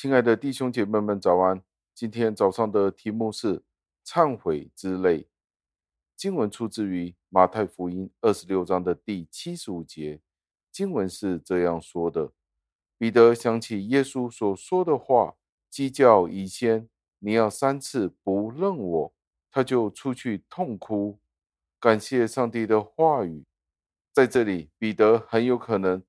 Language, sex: Chinese, male